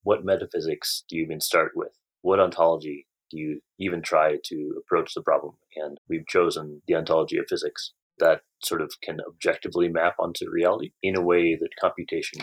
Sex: male